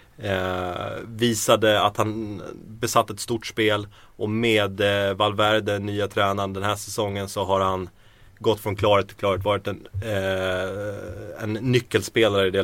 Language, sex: Swedish, male